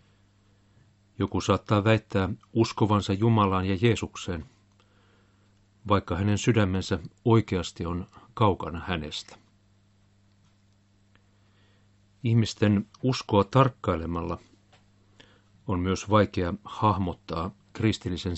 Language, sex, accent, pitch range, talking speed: Finnish, male, native, 95-105 Hz, 70 wpm